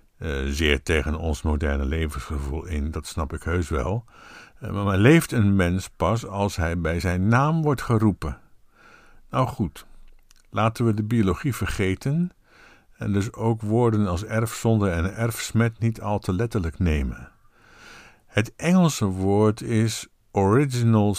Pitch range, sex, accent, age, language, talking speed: 85-115 Hz, male, Dutch, 60-79, Dutch, 145 wpm